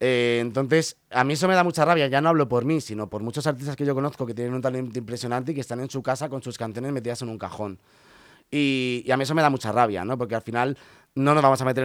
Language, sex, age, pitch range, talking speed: Spanish, male, 30-49, 120-150 Hz, 285 wpm